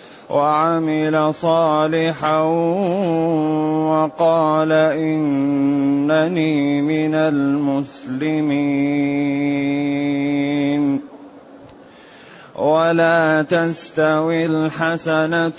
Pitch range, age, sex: 160-210 Hz, 30-49, male